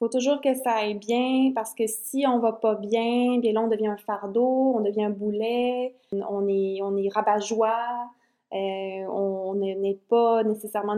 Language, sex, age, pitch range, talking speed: French, female, 20-39, 195-230 Hz, 210 wpm